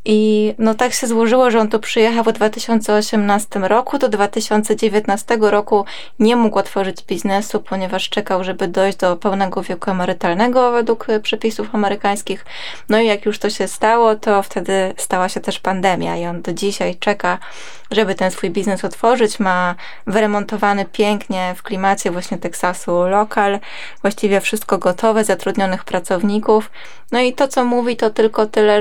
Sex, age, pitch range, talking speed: female, 20-39, 185-220 Hz, 155 wpm